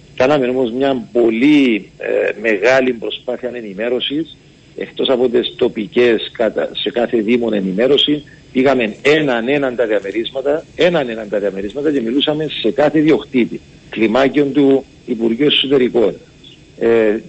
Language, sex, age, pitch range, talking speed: Greek, male, 50-69, 115-150 Hz, 110 wpm